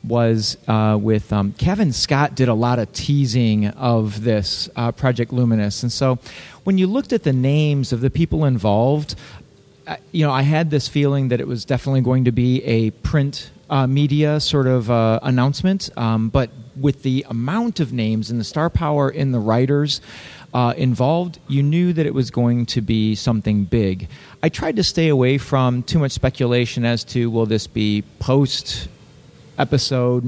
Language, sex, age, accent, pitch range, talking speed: English, male, 40-59, American, 115-145 Hz, 180 wpm